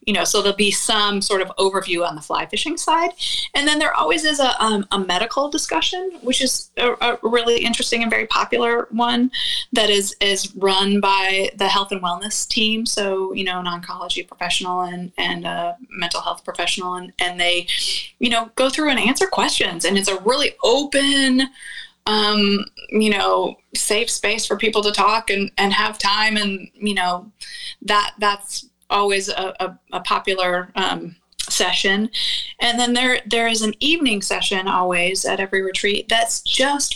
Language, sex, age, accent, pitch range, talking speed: English, female, 20-39, American, 180-240 Hz, 180 wpm